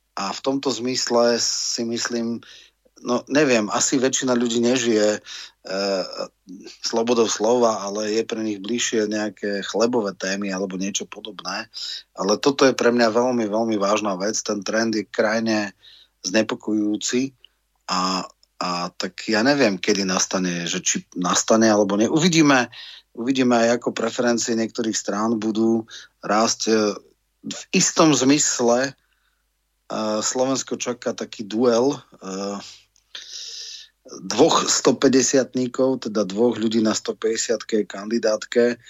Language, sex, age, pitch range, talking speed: Slovak, male, 30-49, 105-120 Hz, 120 wpm